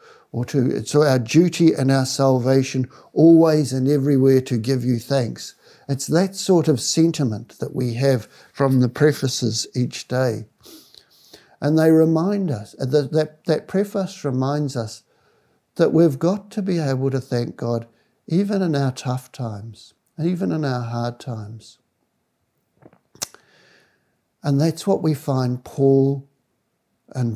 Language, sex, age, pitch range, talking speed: English, male, 60-79, 120-150 Hz, 145 wpm